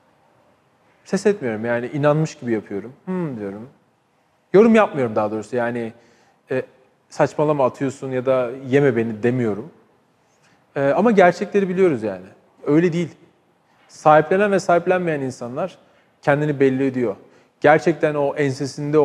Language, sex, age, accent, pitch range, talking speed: Turkish, male, 40-59, native, 125-165 Hz, 115 wpm